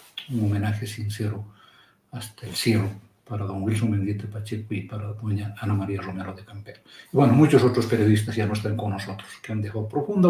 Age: 60-79